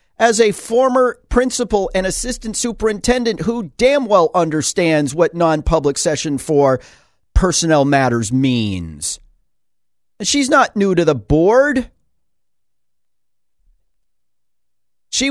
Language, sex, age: English, male, 40-59